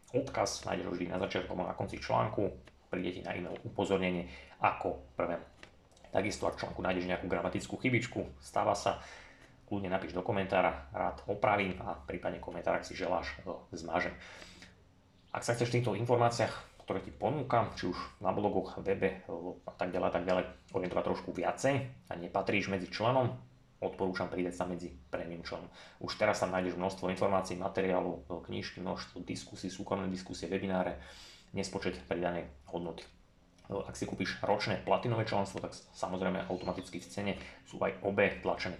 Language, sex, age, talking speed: Slovak, male, 30-49, 155 wpm